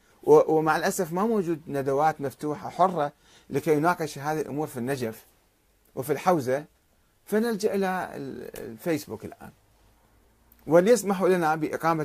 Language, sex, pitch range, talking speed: Arabic, male, 125-175 Hz, 110 wpm